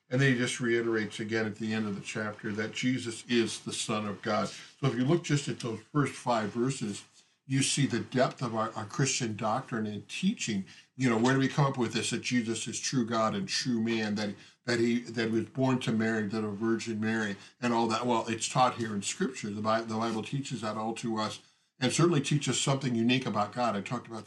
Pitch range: 110-125 Hz